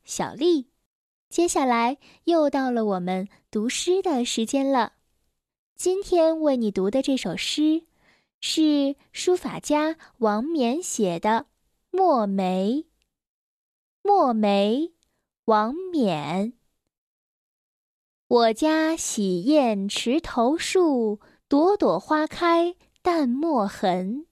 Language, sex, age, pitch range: Chinese, female, 10-29, 210-335 Hz